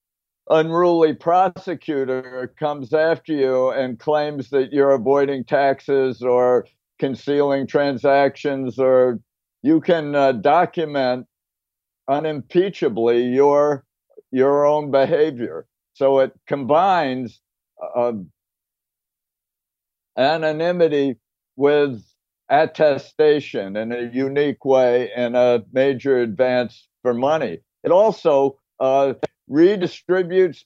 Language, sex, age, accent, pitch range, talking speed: English, male, 60-79, American, 125-155 Hz, 90 wpm